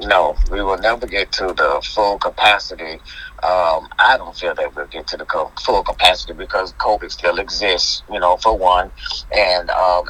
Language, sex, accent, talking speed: English, male, American, 185 wpm